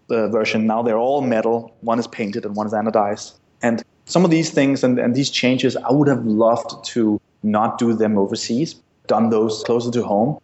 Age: 30-49